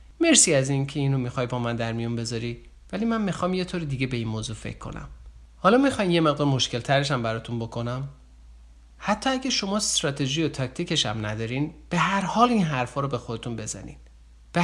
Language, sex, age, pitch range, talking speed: Persian, male, 50-69, 120-175 Hz, 195 wpm